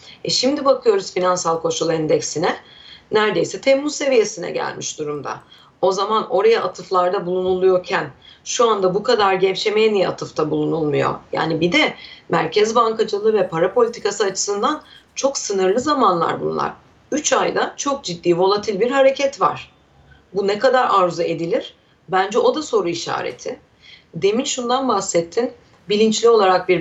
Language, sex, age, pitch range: Turkish, female, 40-59, 175-260 Hz